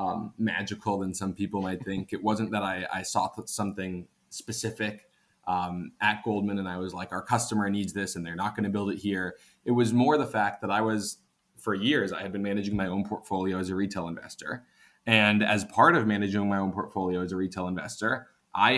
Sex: male